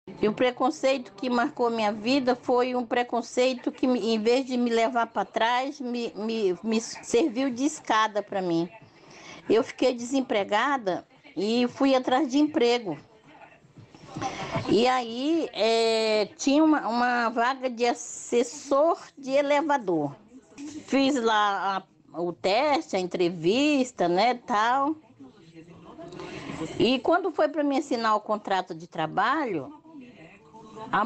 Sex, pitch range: female, 225-290 Hz